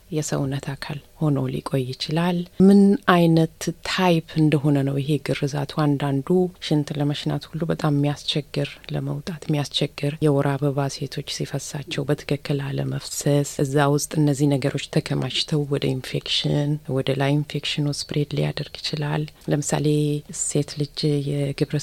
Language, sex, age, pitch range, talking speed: Amharic, female, 30-49, 140-155 Hz, 115 wpm